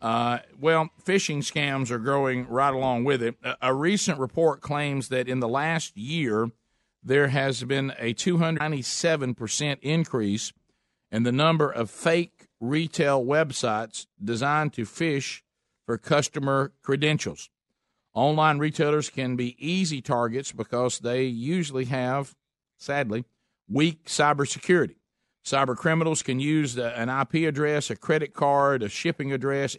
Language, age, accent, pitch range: English, 50-69, American, 120-150 Hz